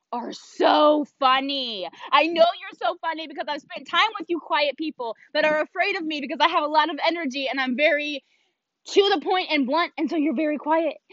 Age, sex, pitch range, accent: 20-39, female, 270-340 Hz, American